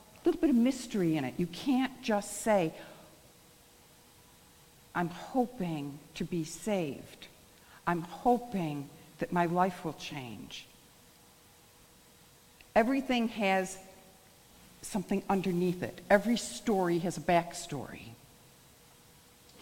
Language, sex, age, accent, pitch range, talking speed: English, female, 60-79, American, 170-245 Hz, 100 wpm